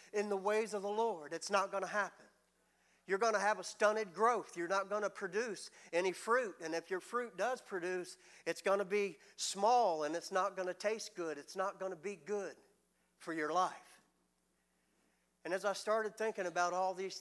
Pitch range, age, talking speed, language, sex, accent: 155-205 Hz, 50-69, 210 wpm, English, male, American